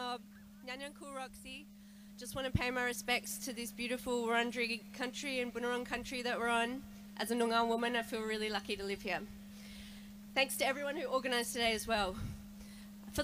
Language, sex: English, female